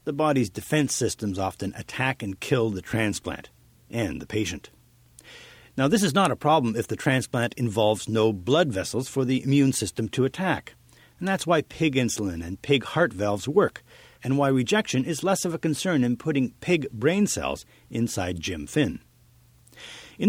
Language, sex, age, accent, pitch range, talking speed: English, male, 50-69, American, 110-155 Hz, 175 wpm